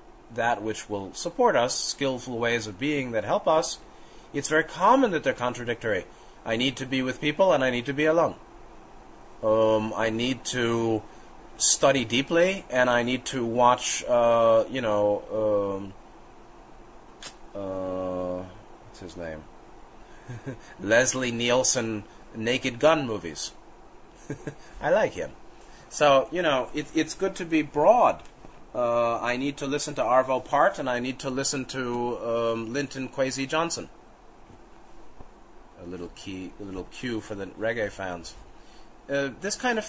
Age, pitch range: 30-49, 115-150 Hz